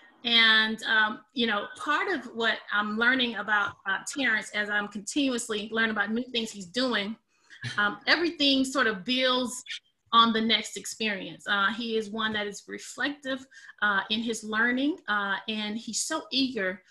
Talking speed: 165 wpm